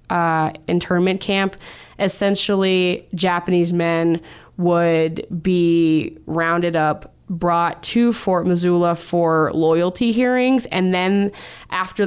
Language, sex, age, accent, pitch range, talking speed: English, female, 20-39, American, 165-195 Hz, 100 wpm